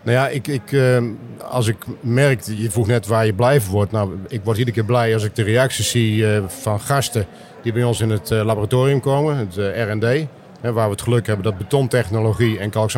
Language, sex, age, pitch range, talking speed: Dutch, male, 50-69, 110-130 Hz, 205 wpm